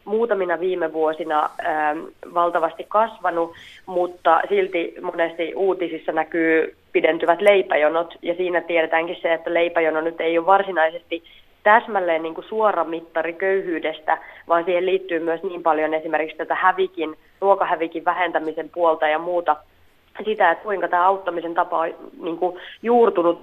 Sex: female